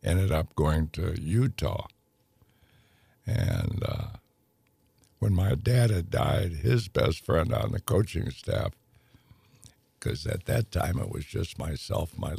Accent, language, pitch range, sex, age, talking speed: American, English, 95-115 Hz, male, 60-79, 135 wpm